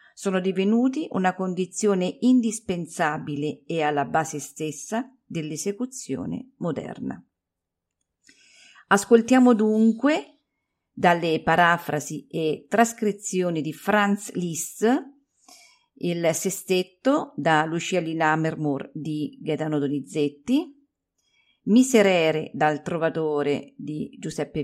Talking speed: 85 wpm